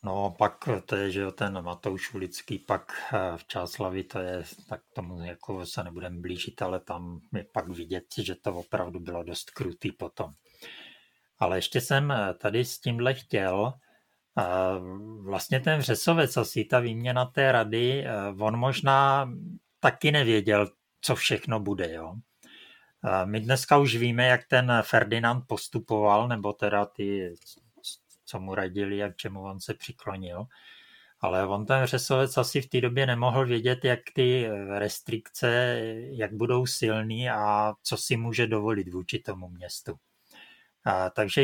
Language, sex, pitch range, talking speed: Czech, male, 100-125 Hz, 145 wpm